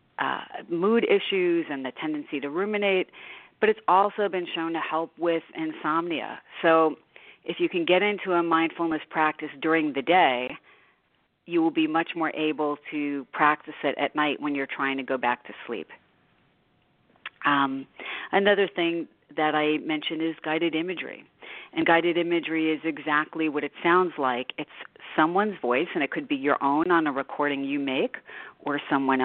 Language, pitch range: English, 145-185 Hz